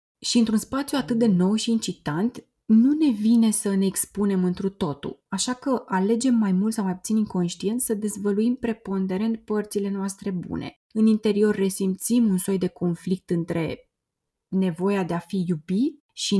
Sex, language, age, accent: female, Romanian, 20-39, native